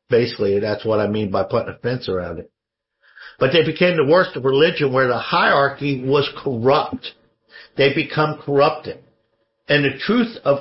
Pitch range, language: 120-150 Hz, English